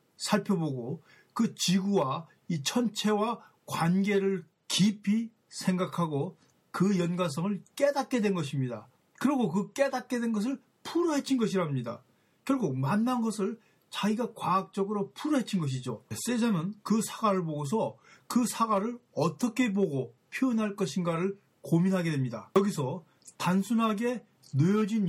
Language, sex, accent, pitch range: Korean, male, native, 165-220 Hz